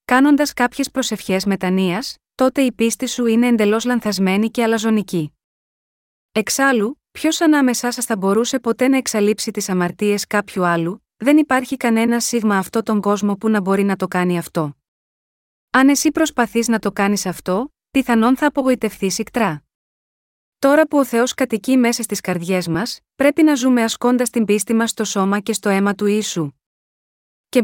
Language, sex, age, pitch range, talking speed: Greek, female, 30-49, 195-245 Hz, 165 wpm